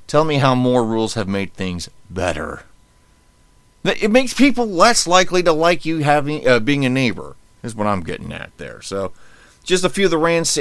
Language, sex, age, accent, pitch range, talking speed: English, male, 30-49, American, 95-130 Hz, 200 wpm